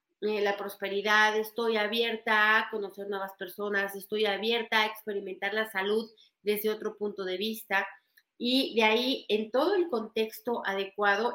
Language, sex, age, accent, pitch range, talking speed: Spanish, female, 40-59, Mexican, 200-240 Hz, 145 wpm